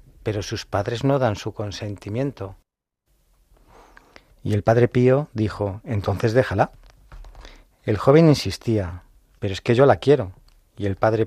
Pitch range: 100-120 Hz